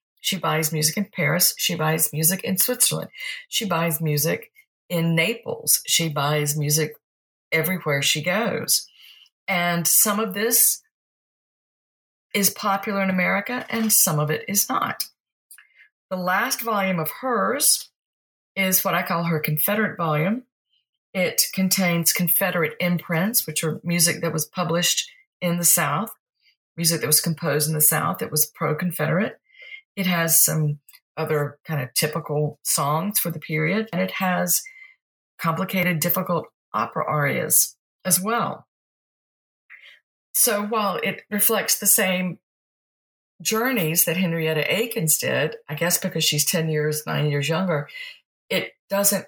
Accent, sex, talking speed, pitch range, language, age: American, female, 135 wpm, 155-200 Hz, English, 40-59